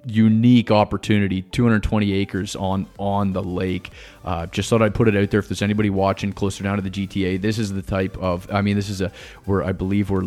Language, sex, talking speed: English, male, 230 wpm